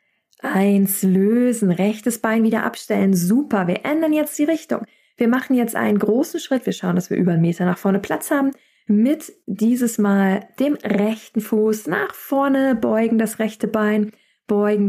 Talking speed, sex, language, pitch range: 170 wpm, female, German, 195-250 Hz